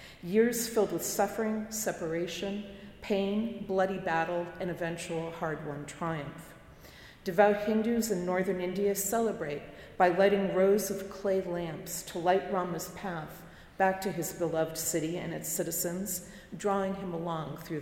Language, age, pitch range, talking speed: English, 40-59, 165-200 Hz, 135 wpm